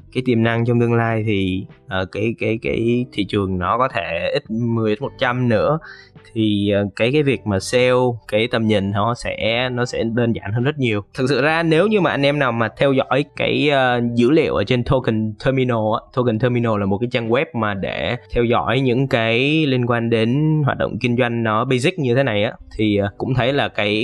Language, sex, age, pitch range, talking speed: Vietnamese, male, 20-39, 100-130 Hz, 230 wpm